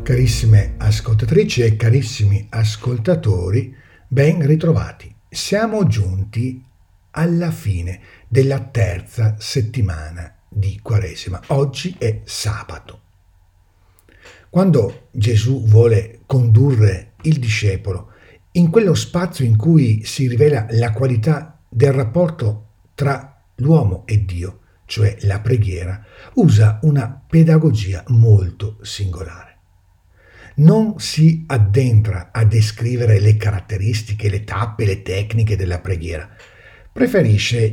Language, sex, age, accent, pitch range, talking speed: Italian, male, 50-69, native, 100-145 Hz, 100 wpm